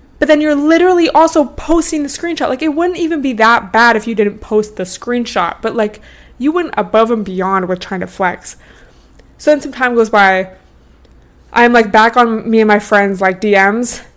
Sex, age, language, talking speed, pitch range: female, 20-39, English, 205 wpm, 185-240 Hz